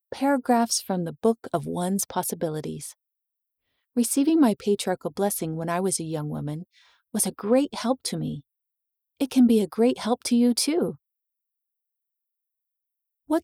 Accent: American